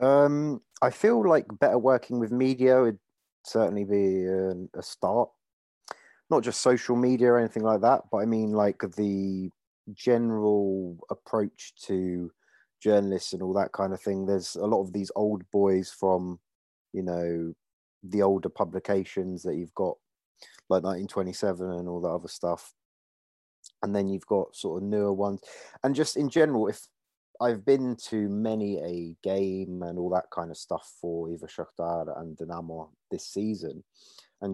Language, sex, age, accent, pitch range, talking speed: English, male, 30-49, British, 85-105 Hz, 160 wpm